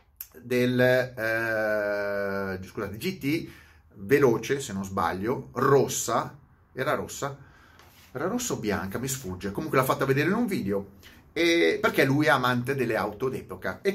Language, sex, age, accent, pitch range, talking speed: Italian, male, 30-49, native, 110-170 Hz, 140 wpm